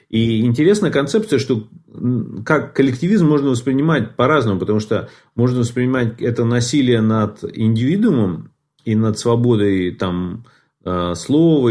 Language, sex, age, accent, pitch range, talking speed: Russian, male, 30-49, native, 110-145 Hz, 120 wpm